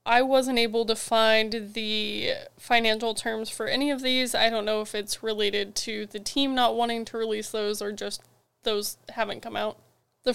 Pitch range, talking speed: 210-240 Hz, 190 wpm